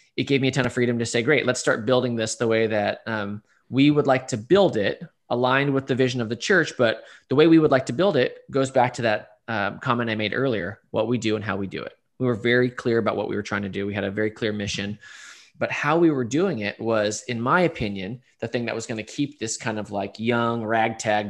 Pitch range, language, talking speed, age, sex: 110-130 Hz, English, 275 wpm, 20-39, male